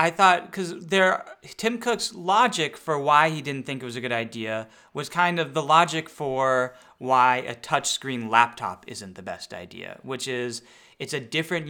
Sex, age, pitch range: male, 20-39, 120-145 Hz